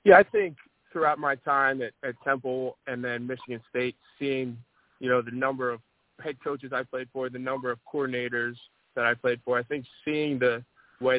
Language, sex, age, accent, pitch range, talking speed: English, male, 20-39, American, 115-130 Hz, 200 wpm